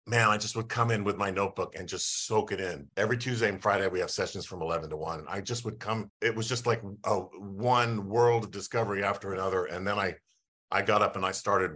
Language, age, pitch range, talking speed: English, 50-69, 100-120 Hz, 250 wpm